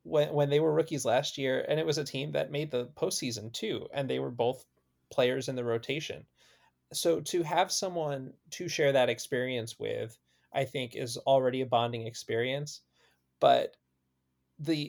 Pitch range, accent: 115-140 Hz, American